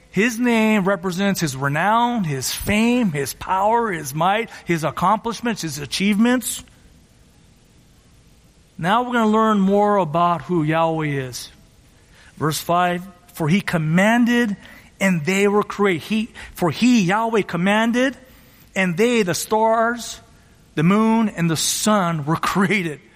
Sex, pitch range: male, 165-220 Hz